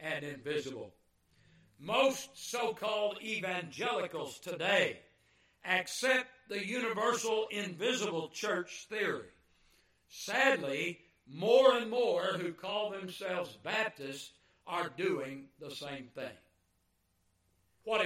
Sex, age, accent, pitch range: male, 60-79, American, 150-220 Hz